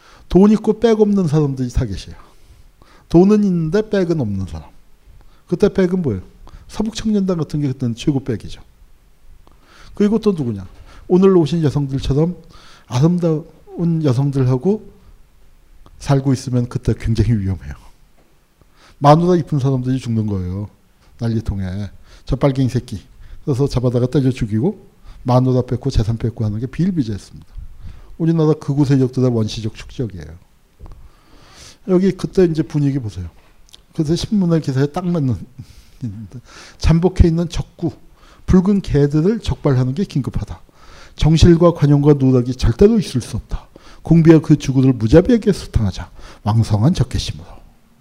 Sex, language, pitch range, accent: male, Korean, 110-170 Hz, native